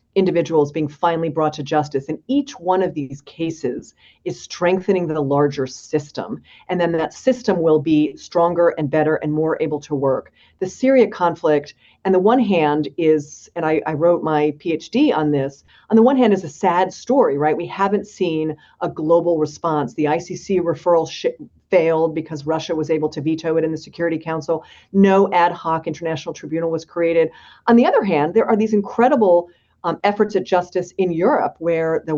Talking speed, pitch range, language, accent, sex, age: 190 wpm, 155-205 Hz, English, American, female, 40-59